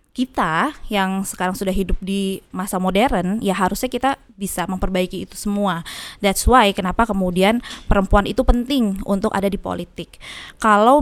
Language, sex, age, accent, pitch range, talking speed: Indonesian, female, 20-39, native, 200-235 Hz, 145 wpm